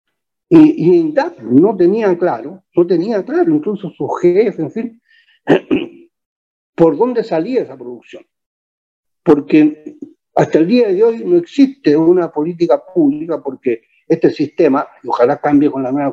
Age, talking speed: 60-79, 140 wpm